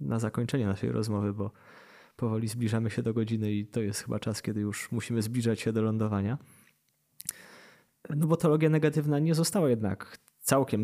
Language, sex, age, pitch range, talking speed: Polish, male, 20-39, 110-125 Hz, 165 wpm